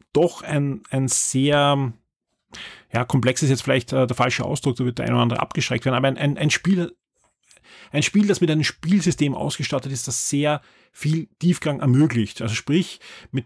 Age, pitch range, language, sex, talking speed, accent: 30-49, 120-150 Hz, German, male, 185 wpm, German